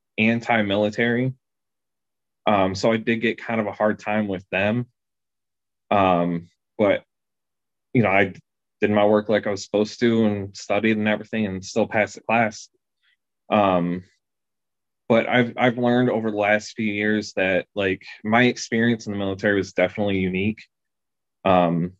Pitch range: 95-110 Hz